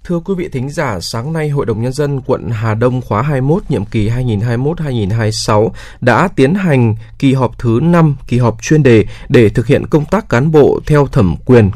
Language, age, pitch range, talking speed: Vietnamese, 20-39, 110-140 Hz, 205 wpm